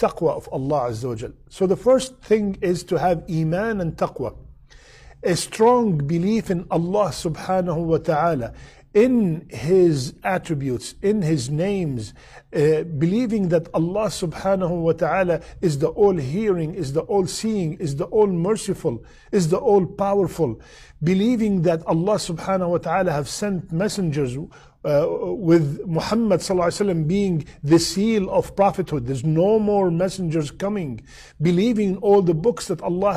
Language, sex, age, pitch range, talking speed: English, male, 50-69, 160-195 Hz, 145 wpm